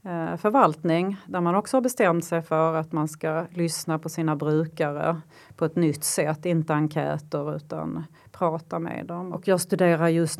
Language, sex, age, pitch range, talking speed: Swedish, female, 30-49, 160-195 Hz, 165 wpm